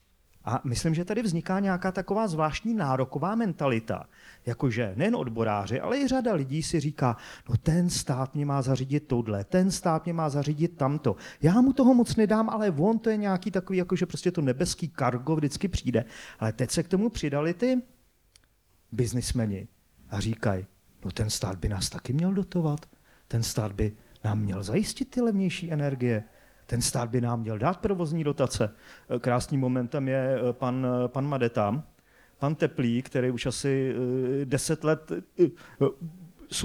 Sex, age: male, 40-59